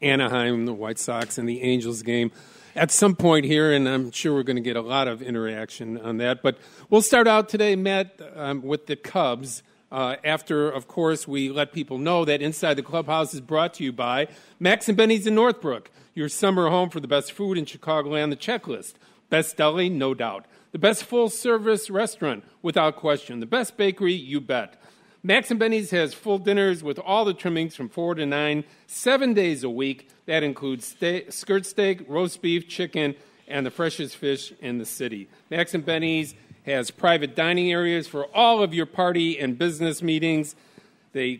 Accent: American